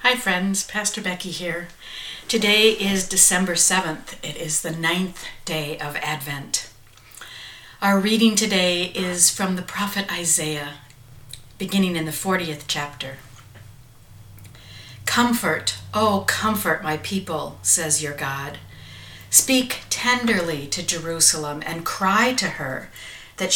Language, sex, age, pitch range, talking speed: English, female, 60-79, 155-210 Hz, 115 wpm